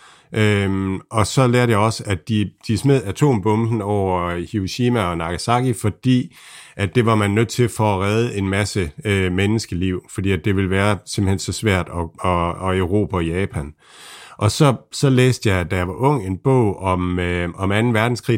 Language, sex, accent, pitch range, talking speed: Danish, male, native, 95-115 Hz, 170 wpm